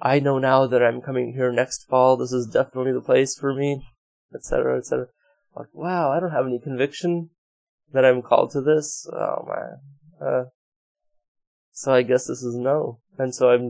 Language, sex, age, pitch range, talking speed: English, male, 20-39, 125-155 Hz, 195 wpm